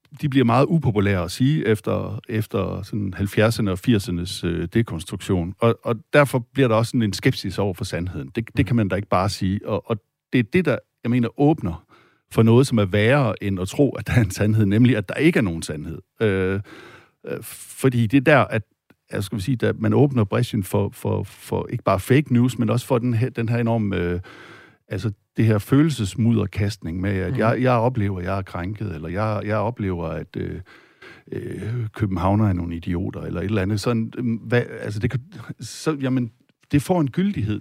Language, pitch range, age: Danish, 100-125 Hz, 60-79